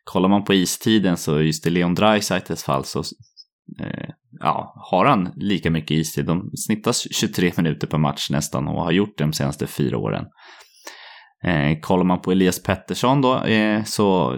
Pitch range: 80-100 Hz